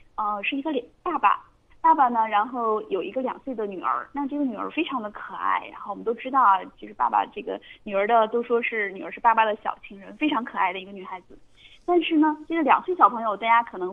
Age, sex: 20-39, female